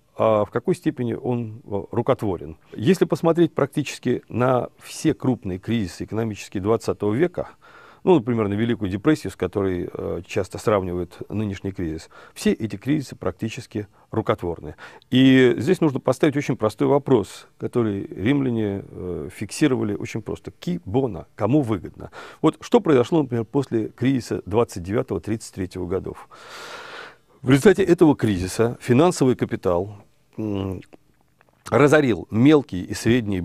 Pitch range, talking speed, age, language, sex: 100-140 Hz, 120 wpm, 40-59, Russian, male